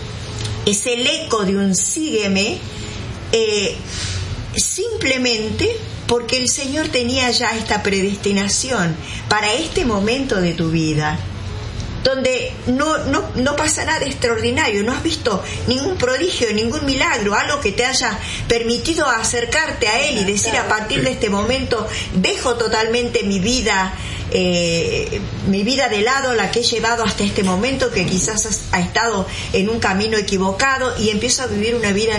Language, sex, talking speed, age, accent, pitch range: Spanish, female, 150 wpm, 50-69, American, 185-245 Hz